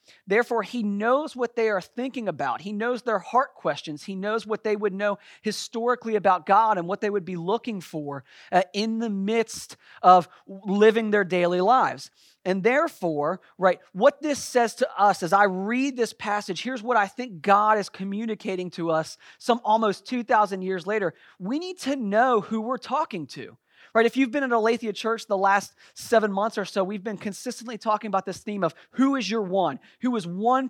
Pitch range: 190-240 Hz